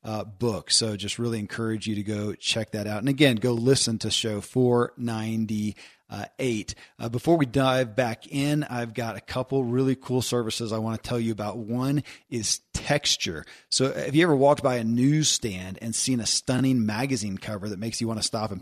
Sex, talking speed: male, 195 wpm